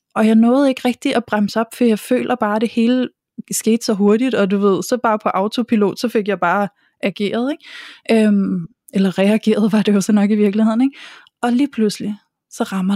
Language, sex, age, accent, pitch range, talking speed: Danish, female, 20-39, native, 200-240 Hz, 220 wpm